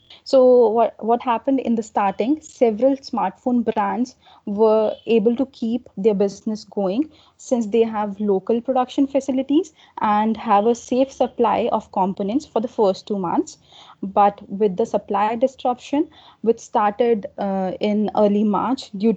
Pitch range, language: 205-245 Hz, English